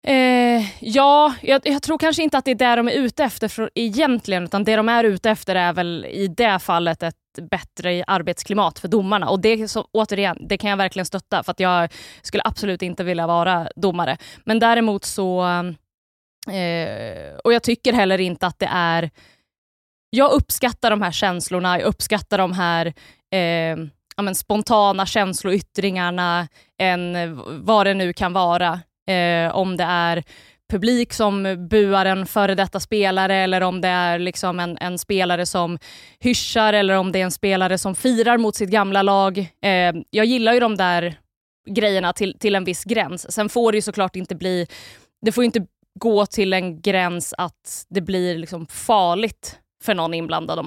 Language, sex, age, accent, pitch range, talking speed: Swedish, female, 20-39, native, 175-215 Hz, 180 wpm